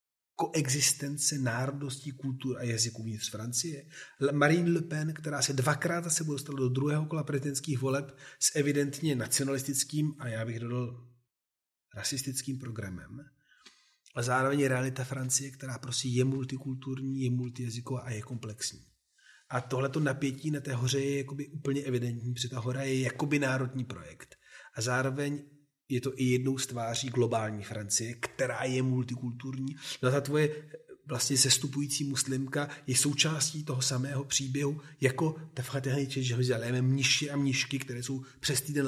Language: Czech